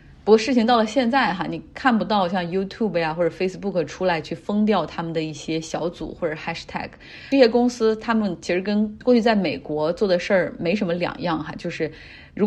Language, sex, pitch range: Chinese, female, 165-220 Hz